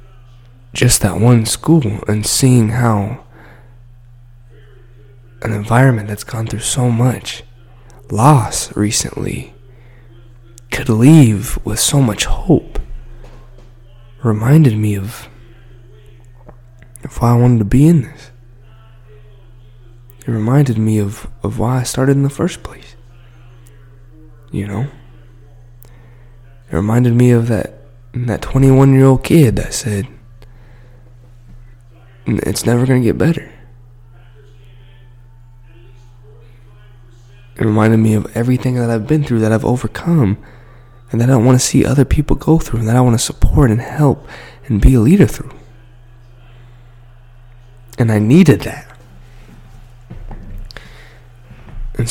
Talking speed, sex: 120 wpm, male